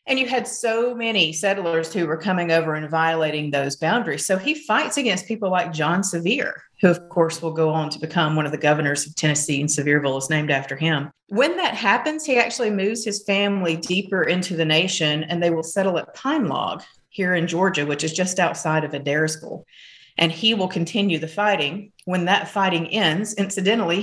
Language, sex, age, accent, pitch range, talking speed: English, female, 40-59, American, 160-210 Hz, 200 wpm